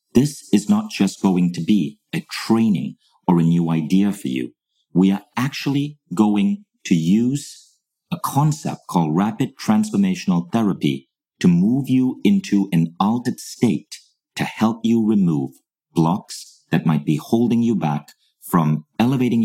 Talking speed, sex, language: 145 wpm, male, English